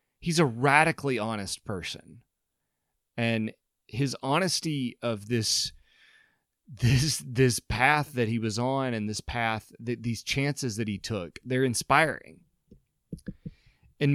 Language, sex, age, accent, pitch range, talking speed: English, male, 30-49, American, 110-140 Hz, 125 wpm